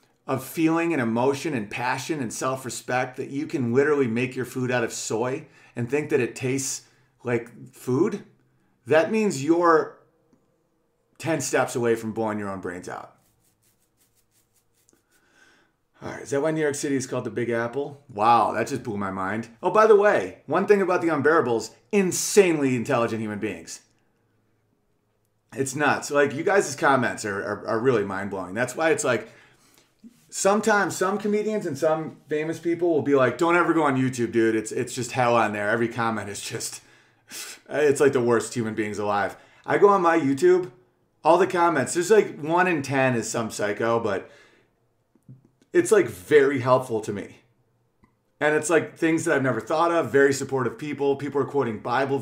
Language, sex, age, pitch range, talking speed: English, male, 30-49, 115-160 Hz, 180 wpm